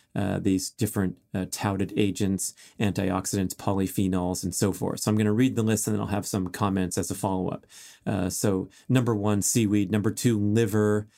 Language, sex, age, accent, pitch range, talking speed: English, male, 40-59, American, 105-125 Hz, 185 wpm